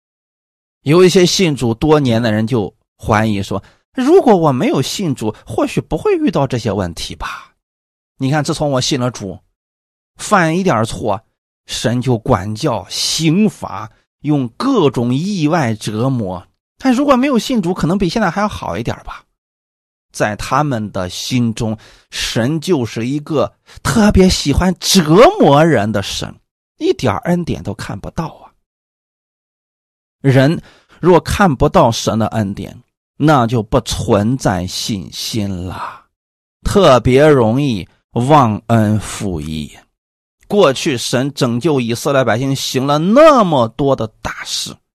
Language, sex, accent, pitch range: Chinese, male, native, 105-160 Hz